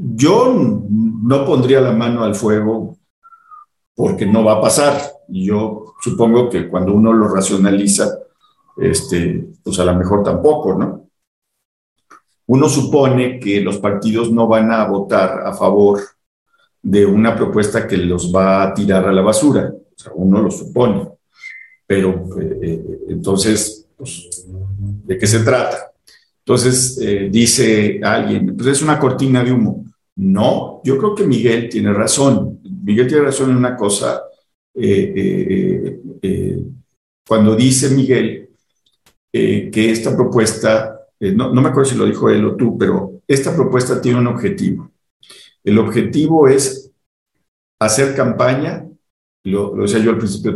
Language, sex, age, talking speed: Spanish, male, 50-69, 145 wpm